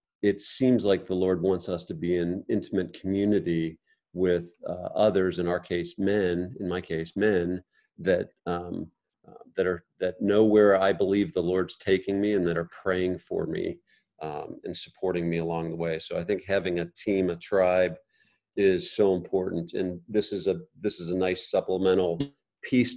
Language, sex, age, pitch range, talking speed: English, male, 40-59, 85-105 Hz, 185 wpm